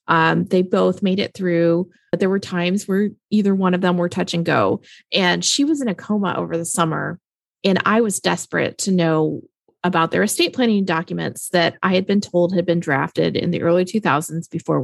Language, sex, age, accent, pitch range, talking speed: English, female, 30-49, American, 170-205 Hz, 215 wpm